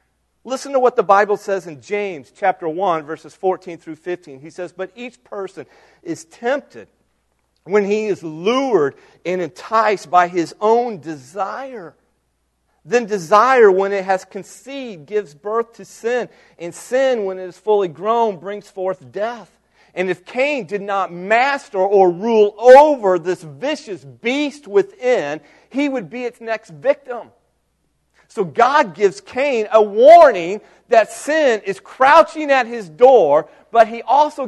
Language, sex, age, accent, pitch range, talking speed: English, male, 40-59, American, 180-255 Hz, 150 wpm